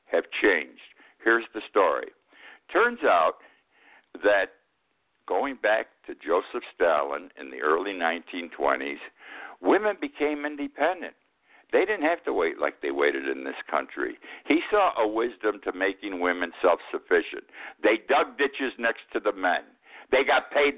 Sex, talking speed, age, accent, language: male, 140 wpm, 60-79, American, English